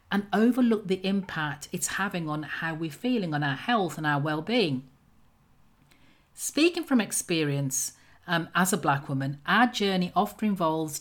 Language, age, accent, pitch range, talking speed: English, 40-59, British, 155-230 Hz, 155 wpm